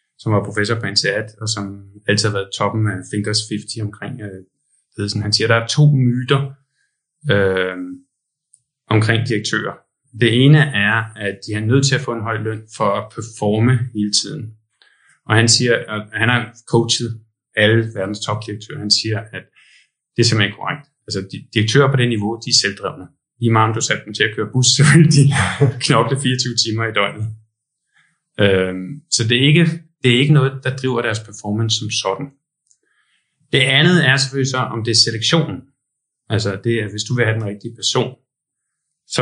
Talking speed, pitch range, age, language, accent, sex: 190 wpm, 105-135 Hz, 20-39, Danish, native, male